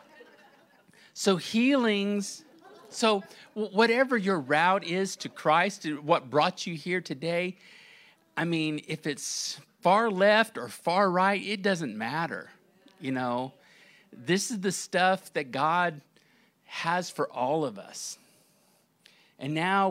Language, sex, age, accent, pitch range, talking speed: English, male, 50-69, American, 140-200 Hz, 125 wpm